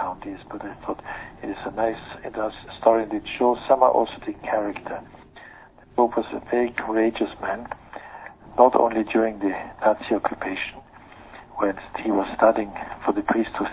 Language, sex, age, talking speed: English, male, 50-69, 155 wpm